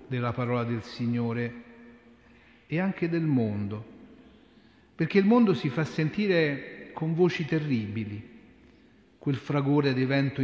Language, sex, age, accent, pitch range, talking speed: Italian, male, 40-59, native, 120-155 Hz, 120 wpm